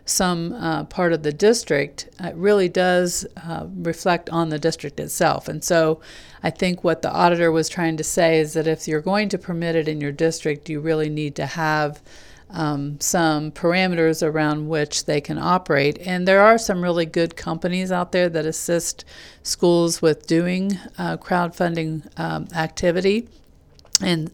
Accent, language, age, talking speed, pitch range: American, English, 50-69, 170 wpm, 155-175 Hz